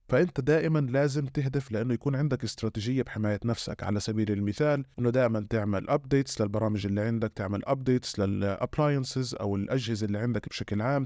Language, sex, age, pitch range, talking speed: Arabic, male, 20-39, 110-140 Hz, 155 wpm